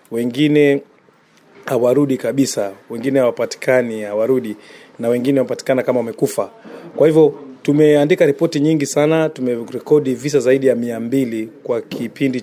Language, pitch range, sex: Swahili, 125-145 Hz, male